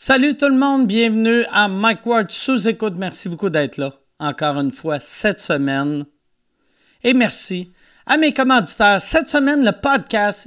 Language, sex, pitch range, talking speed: French, male, 180-250 Hz, 155 wpm